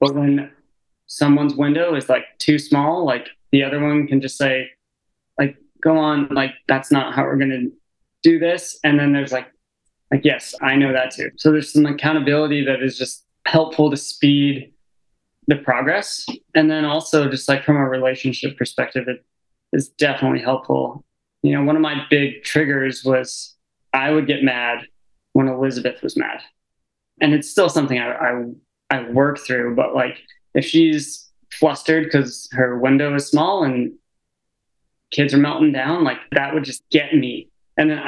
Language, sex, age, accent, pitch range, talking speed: English, male, 20-39, American, 130-150 Hz, 175 wpm